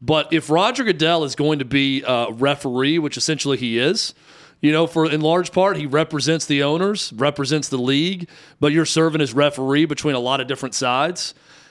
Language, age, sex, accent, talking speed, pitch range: English, 40-59, male, American, 195 wpm, 130-160 Hz